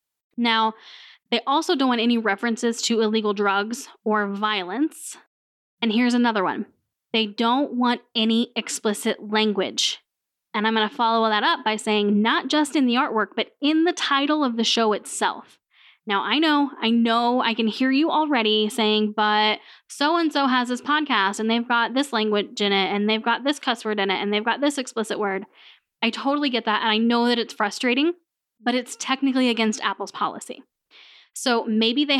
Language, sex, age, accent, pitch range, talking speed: English, female, 10-29, American, 215-260 Hz, 185 wpm